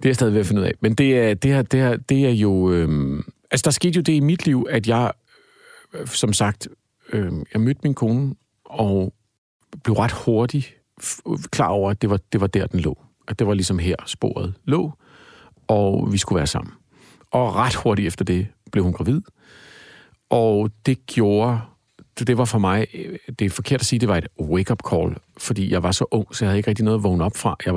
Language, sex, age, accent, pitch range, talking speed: Danish, male, 50-69, native, 95-120 Hz, 225 wpm